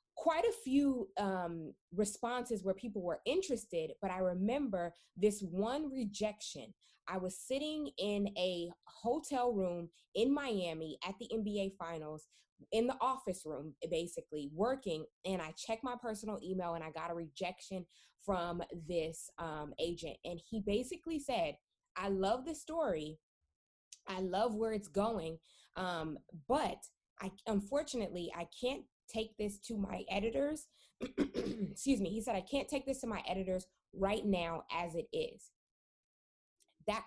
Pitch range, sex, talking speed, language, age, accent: 175-235 Hz, female, 145 wpm, English, 20-39, American